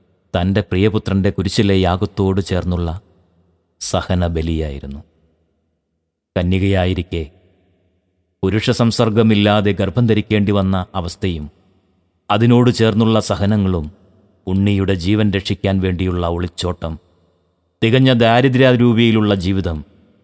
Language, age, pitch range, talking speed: English, 30-49, 90-110 Hz, 65 wpm